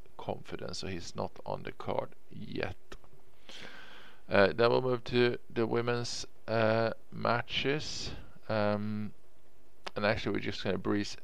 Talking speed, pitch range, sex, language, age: 135 wpm, 95-115 Hz, male, English, 50-69